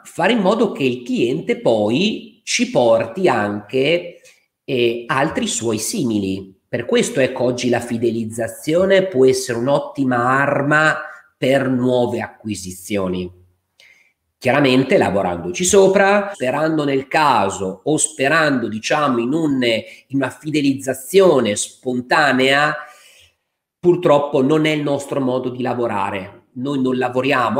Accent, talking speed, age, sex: native, 115 wpm, 40-59, male